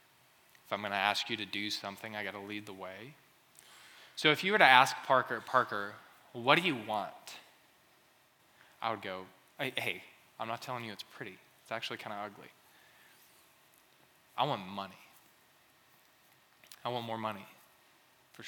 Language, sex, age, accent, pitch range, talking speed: English, male, 20-39, American, 105-120 Hz, 160 wpm